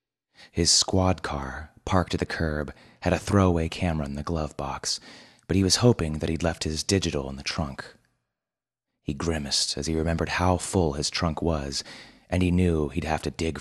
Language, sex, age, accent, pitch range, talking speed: English, male, 30-49, American, 75-90 Hz, 195 wpm